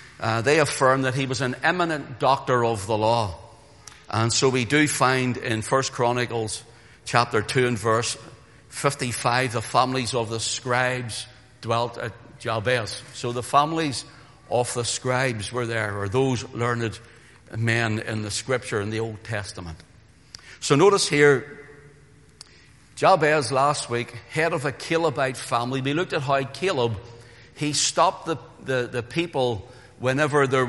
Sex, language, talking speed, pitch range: male, English, 150 wpm, 115-140 Hz